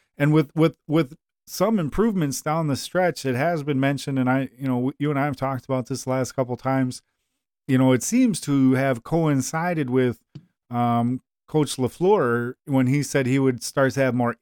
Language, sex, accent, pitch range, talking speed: English, male, American, 130-170 Hz, 205 wpm